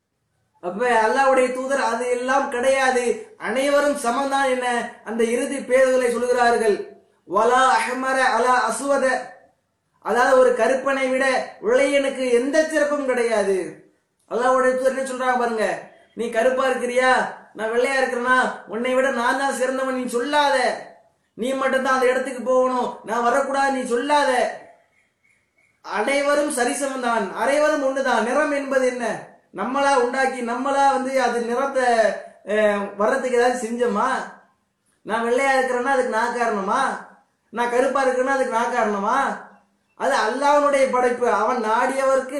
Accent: Indian